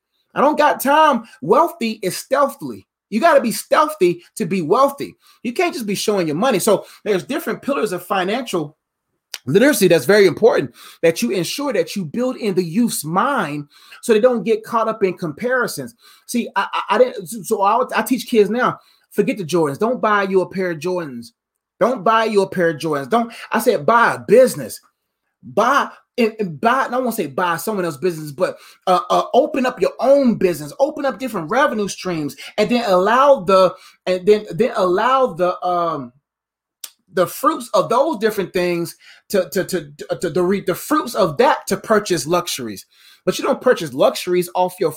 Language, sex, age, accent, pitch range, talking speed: English, male, 30-49, American, 180-245 Hz, 190 wpm